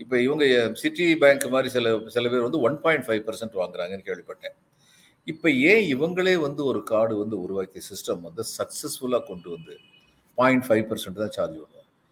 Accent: native